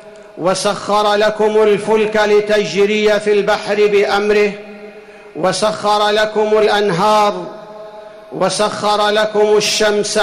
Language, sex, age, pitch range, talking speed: Arabic, male, 50-69, 205-220 Hz, 75 wpm